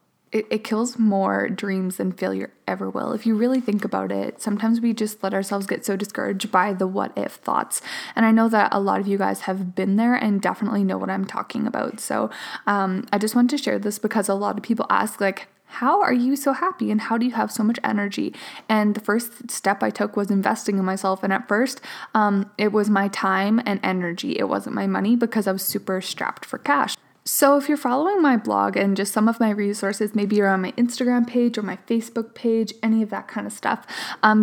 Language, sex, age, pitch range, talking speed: English, female, 20-39, 195-230 Hz, 235 wpm